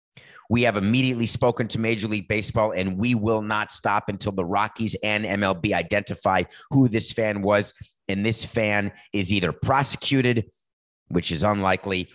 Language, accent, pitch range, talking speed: English, American, 100-130 Hz, 160 wpm